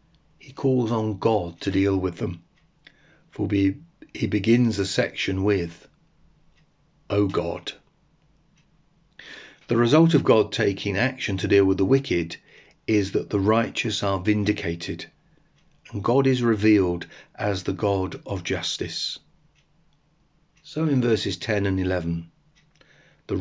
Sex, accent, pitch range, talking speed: male, British, 95-145 Hz, 130 wpm